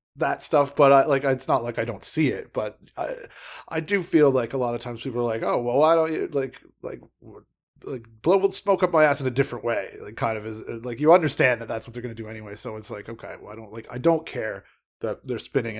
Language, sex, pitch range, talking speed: English, male, 115-145 Hz, 270 wpm